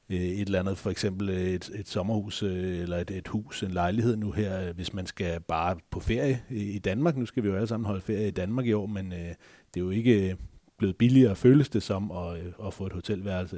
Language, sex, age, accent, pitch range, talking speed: Danish, male, 30-49, native, 90-115 Hz, 230 wpm